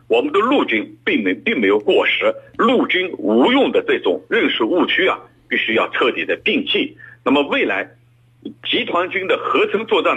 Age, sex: 50-69, male